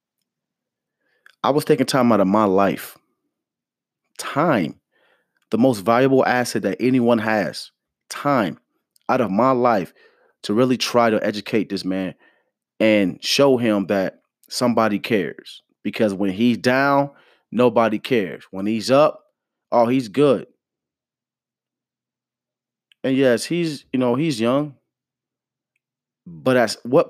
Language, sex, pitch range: English, male, 105-130 Hz